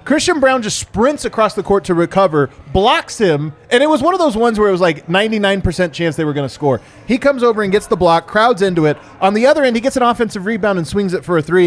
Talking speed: 275 wpm